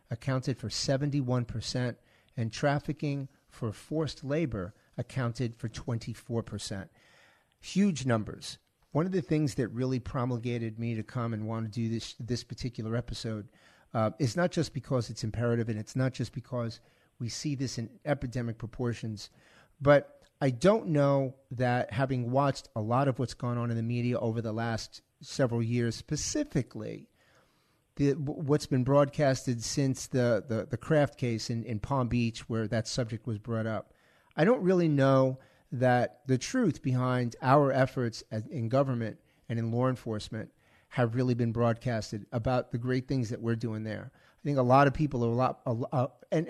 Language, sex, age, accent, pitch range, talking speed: English, male, 40-59, American, 115-140 Hz, 170 wpm